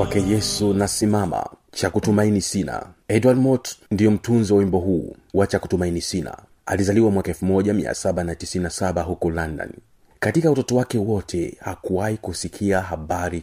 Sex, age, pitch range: male, 40-59, 95-115 Hz